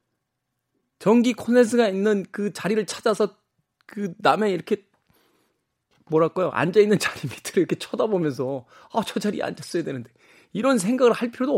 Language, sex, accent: Korean, male, native